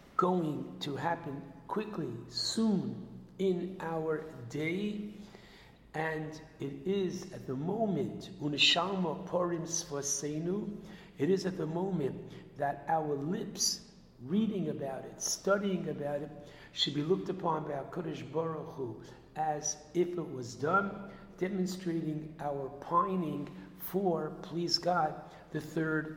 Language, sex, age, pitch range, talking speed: English, male, 60-79, 145-180 Hz, 110 wpm